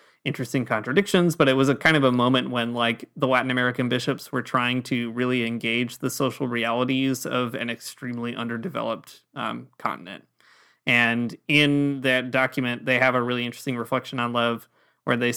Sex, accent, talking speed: male, American, 170 wpm